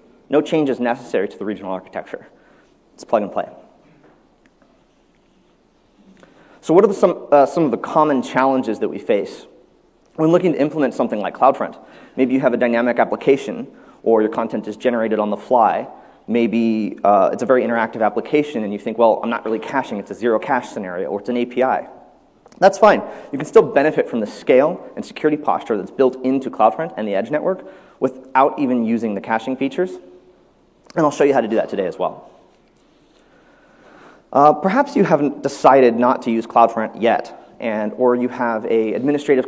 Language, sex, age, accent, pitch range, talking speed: English, male, 30-49, American, 115-150 Hz, 185 wpm